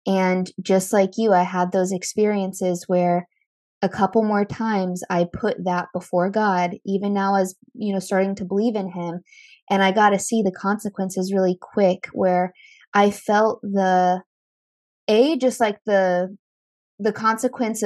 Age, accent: 20-39, American